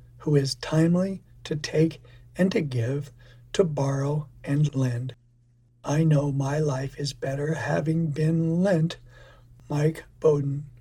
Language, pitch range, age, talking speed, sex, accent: English, 120-155 Hz, 60-79, 130 wpm, male, American